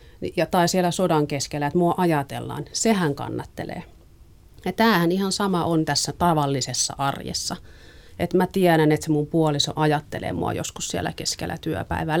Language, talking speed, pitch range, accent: Finnish, 150 wpm, 150-190 Hz, native